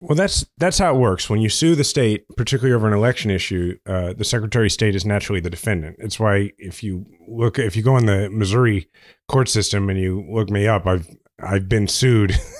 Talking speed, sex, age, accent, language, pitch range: 225 wpm, male, 30-49, American, English, 95-125 Hz